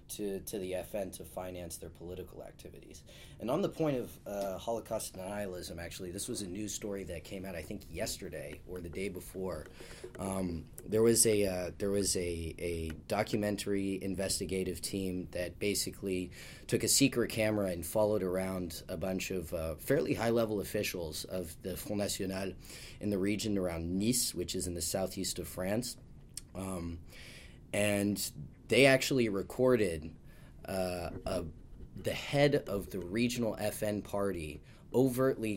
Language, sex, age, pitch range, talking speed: English, male, 30-49, 90-110 Hz, 155 wpm